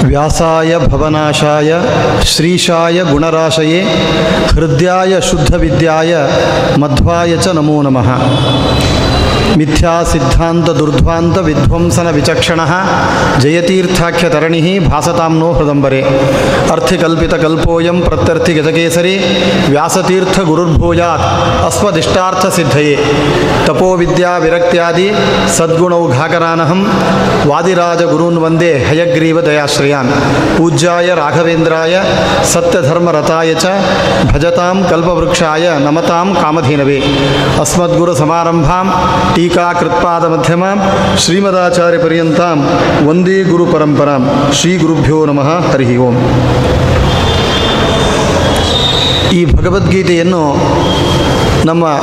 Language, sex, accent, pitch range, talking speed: Kannada, male, native, 150-175 Hz, 50 wpm